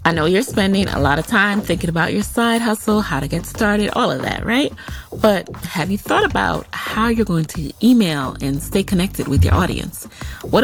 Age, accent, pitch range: 30-49, American, 155-225 Hz